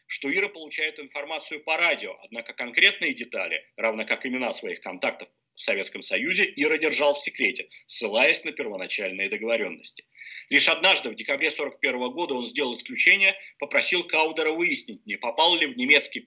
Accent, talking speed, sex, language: native, 155 wpm, male, Russian